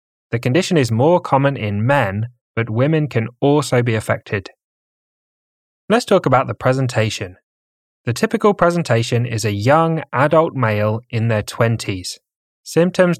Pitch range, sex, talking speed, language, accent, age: 110-140 Hz, male, 135 wpm, English, British, 10-29